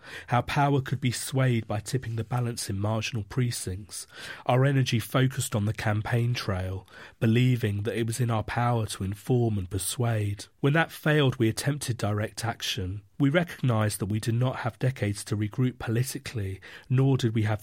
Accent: British